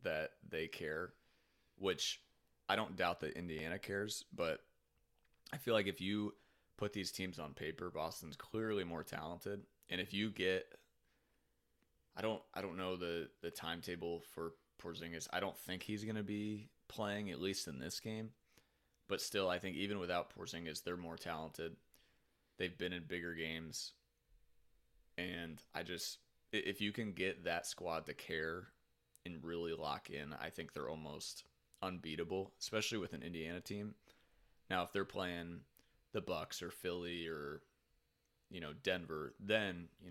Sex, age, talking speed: male, 20-39, 165 wpm